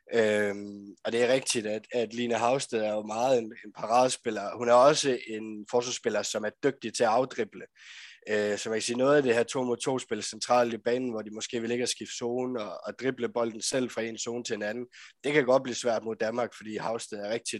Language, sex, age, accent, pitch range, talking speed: Danish, male, 20-39, native, 110-125 Hz, 235 wpm